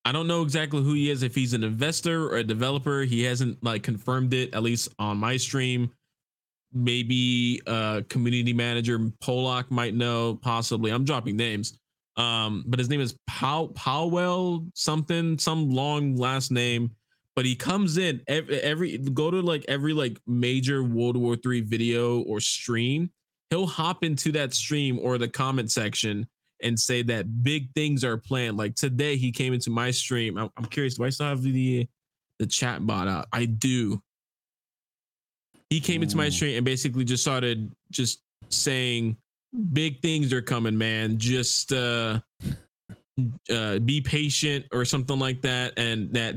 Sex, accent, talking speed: male, American, 170 wpm